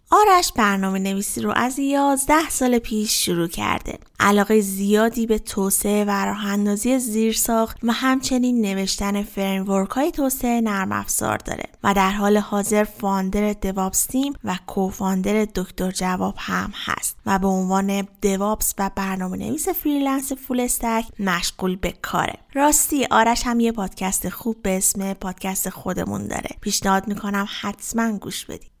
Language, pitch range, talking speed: Persian, 195-250 Hz, 145 wpm